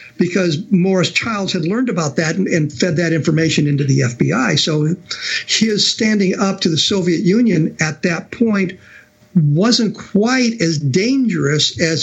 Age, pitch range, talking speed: 50-69, 150-185 Hz, 155 wpm